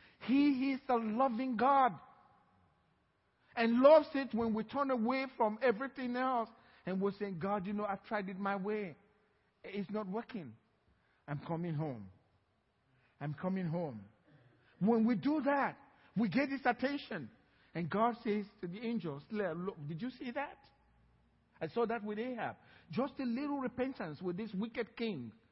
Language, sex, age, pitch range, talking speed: English, male, 50-69, 170-250 Hz, 160 wpm